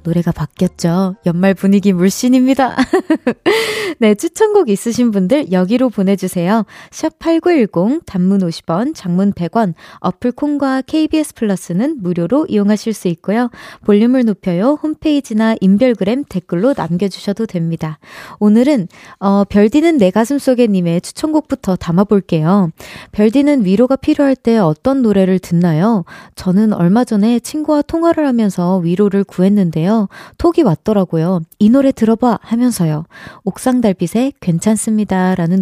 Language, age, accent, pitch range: Korean, 20-39, native, 185-255 Hz